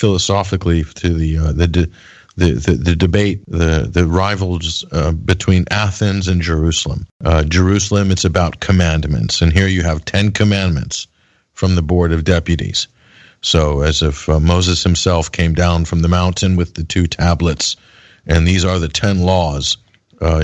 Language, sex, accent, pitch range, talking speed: English, male, American, 80-95 Hz, 160 wpm